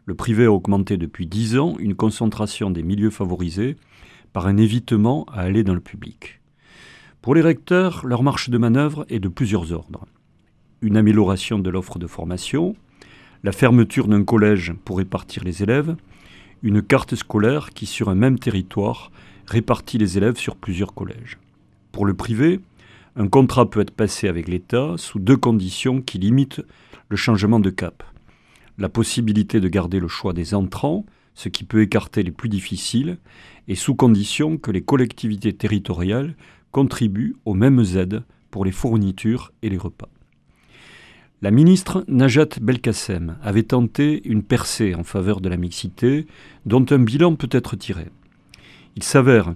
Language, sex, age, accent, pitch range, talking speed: French, male, 40-59, French, 95-125 Hz, 160 wpm